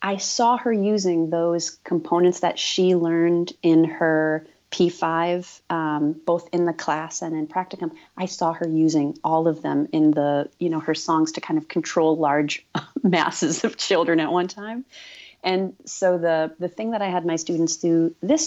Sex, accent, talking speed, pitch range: female, American, 180 wpm, 155-180 Hz